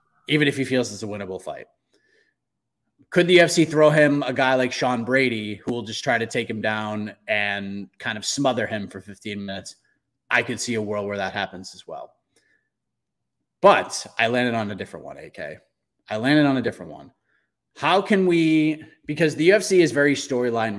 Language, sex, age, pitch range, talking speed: English, male, 30-49, 110-160 Hz, 195 wpm